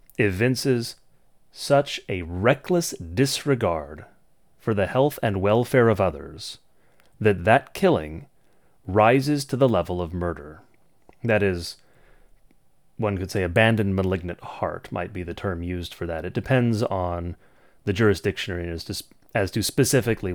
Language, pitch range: English, 90-125 Hz